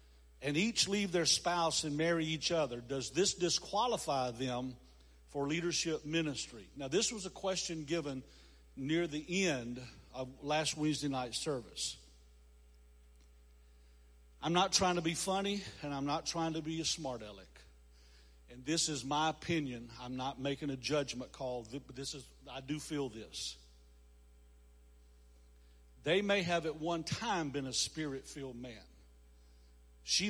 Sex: male